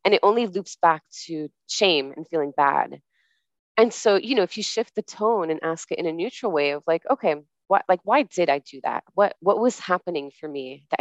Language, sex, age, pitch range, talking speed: English, female, 20-39, 155-200 Hz, 235 wpm